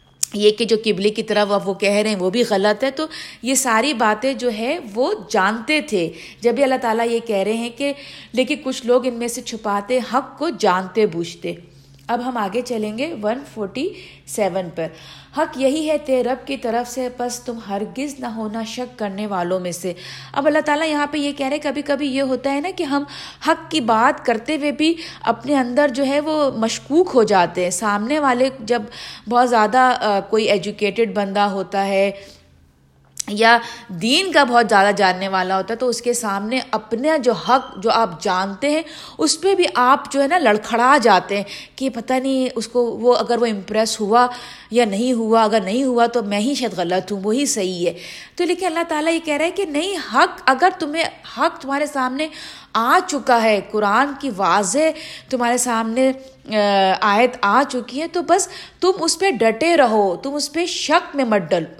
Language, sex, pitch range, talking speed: Urdu, female, 205-280 Hz, 200 wpm